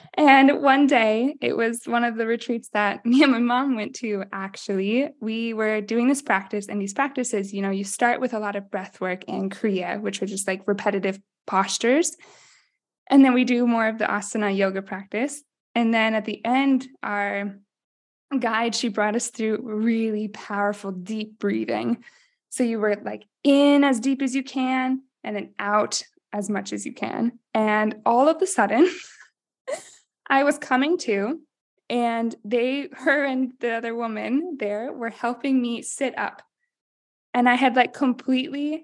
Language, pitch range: English, 205-260 Hz